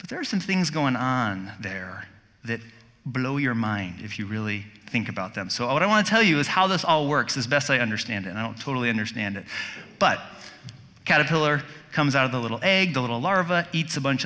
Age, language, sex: 30-49, English, male